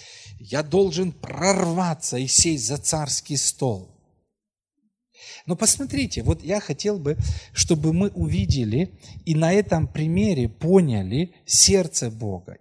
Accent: native